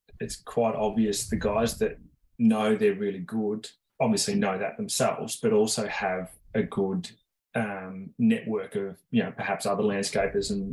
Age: 20-39